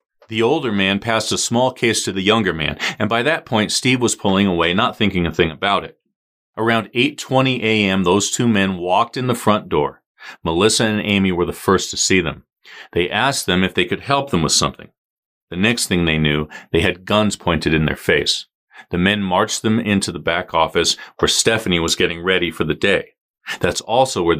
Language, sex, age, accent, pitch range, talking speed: English, male, 40-59, American, 95-115 Hz, 210 wpm